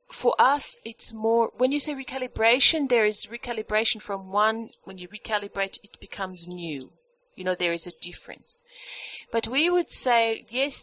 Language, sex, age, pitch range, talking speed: English, female, 40-59, 195-310 Hz, 165 wpm